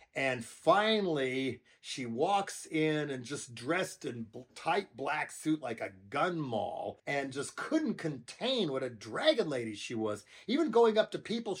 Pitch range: 125-200 Hz